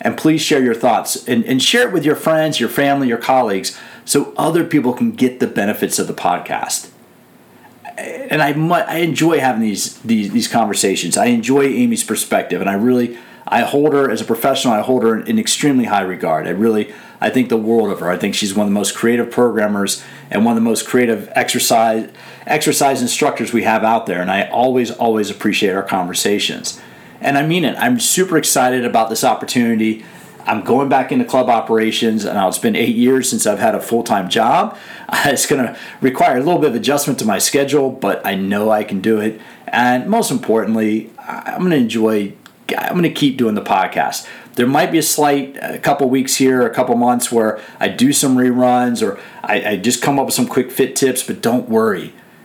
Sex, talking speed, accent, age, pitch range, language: male, 210 wpm, American, 40-59, 115-150 Hz, English